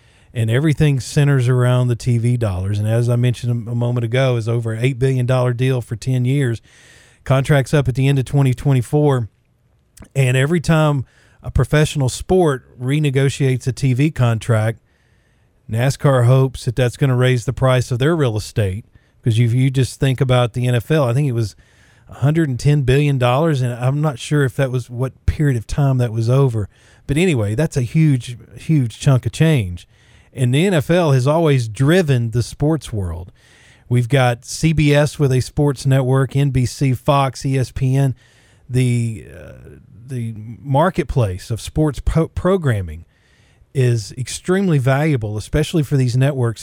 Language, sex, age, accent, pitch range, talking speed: English, male, 40-59, American, 120-145 Hz, 160 wpm